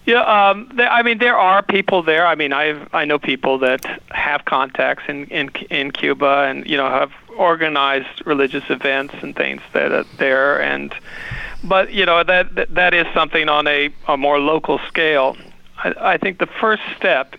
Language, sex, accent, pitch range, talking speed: English, male, American, 140-180 Hz, 190 wpm